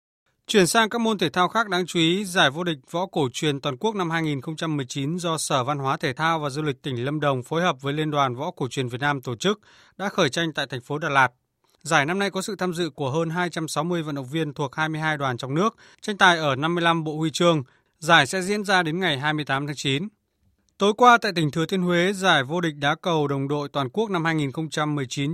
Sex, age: male, 20-39